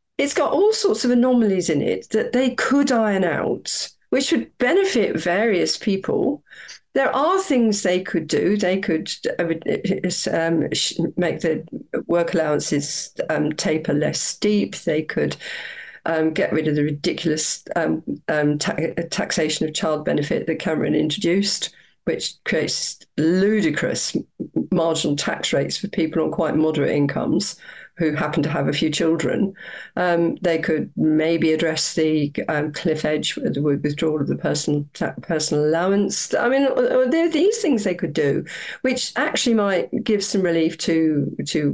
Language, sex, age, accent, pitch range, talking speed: English, female, 50-69, British, 155-220 Hz, 150 wpm